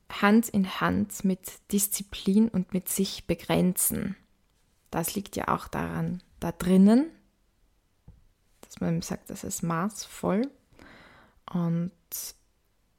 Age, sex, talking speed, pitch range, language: 20-39, female, 105 wpm, 180-220 Hz, German